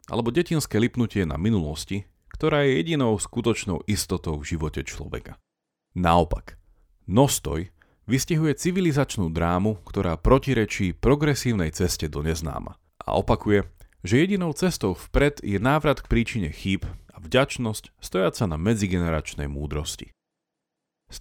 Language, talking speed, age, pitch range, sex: Slovak, 120 wpm, 40-59, 85-120 Hz, male